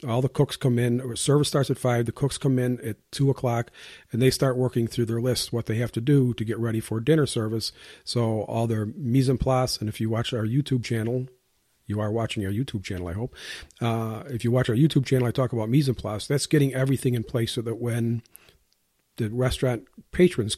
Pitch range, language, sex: 110-135 Hz, English, male